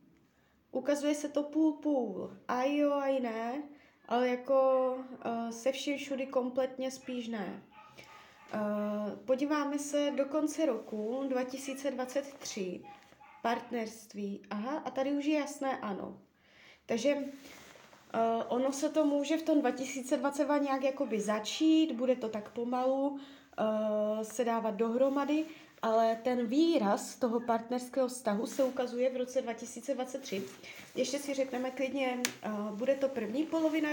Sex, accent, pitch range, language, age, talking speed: female, native, 230-285 Hz, Czech, 20-39, 125 wpm